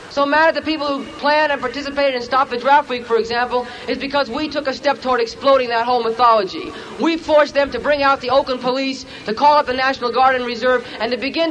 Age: 40-59